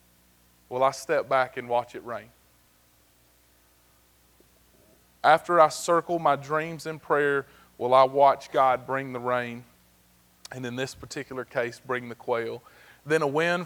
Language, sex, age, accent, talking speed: English, male, 30-49, American, 145 wpm